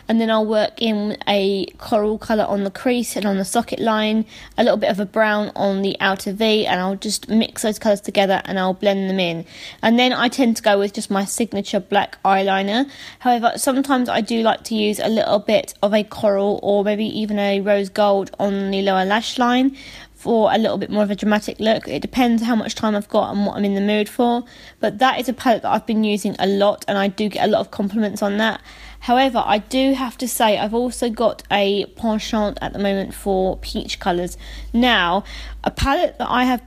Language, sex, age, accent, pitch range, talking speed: English, female, 20-39, British, 195-225 Hz, 230 wpm